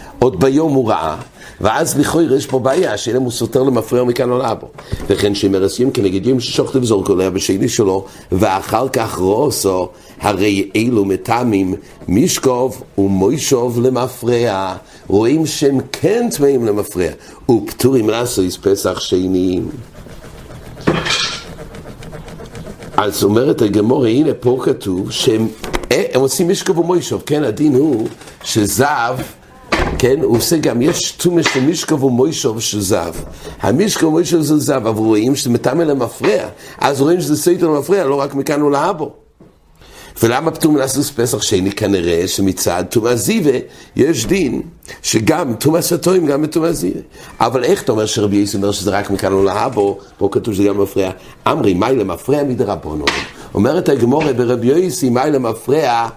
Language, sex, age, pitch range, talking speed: English, male, 60-79, 100-145 Hz, 130 wpm